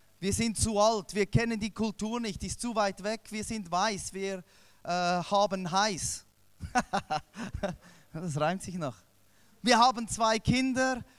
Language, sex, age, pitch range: German, male, 20-39, 145-220 Hz